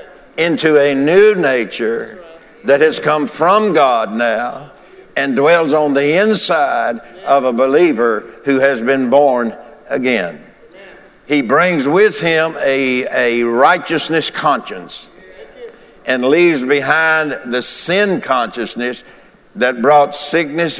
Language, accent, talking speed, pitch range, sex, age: English, American, 115 wpm, 130-185 Hz, male, 60-79